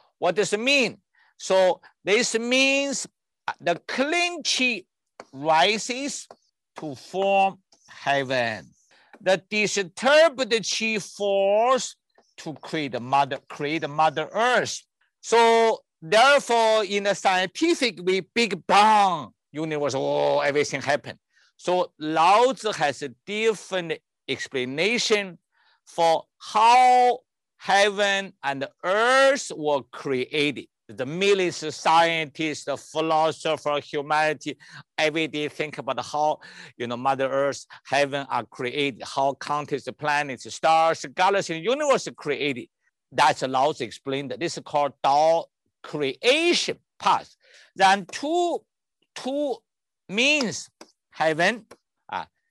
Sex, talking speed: male, 110 wpm